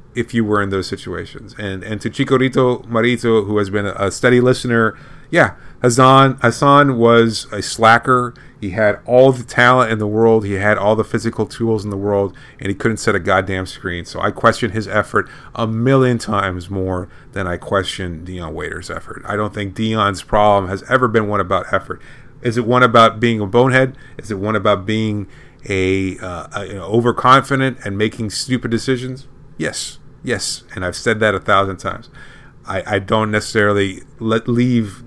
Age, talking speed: 30-49, 190 wpm